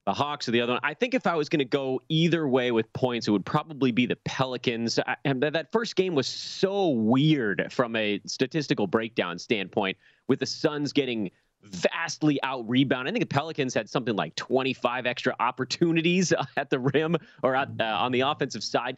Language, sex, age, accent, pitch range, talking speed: English, male, 30-49, American, 130-160 Hz, 195 wpm